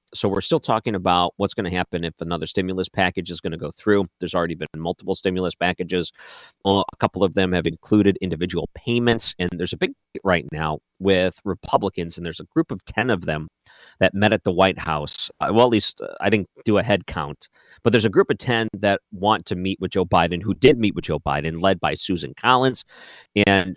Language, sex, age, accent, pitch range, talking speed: English, male, 40-59, American, 90-115 Hz, 220 wpm